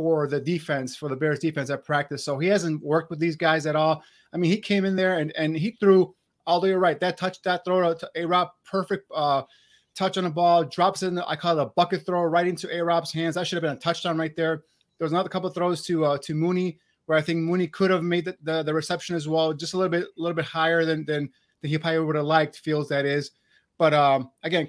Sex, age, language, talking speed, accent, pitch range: male, 30-49, English, 270 wpm, American, 150-180 Hz